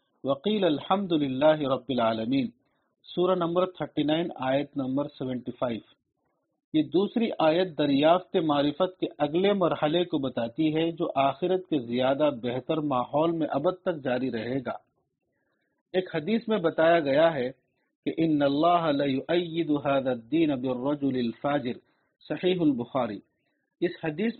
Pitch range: 140-180 Hz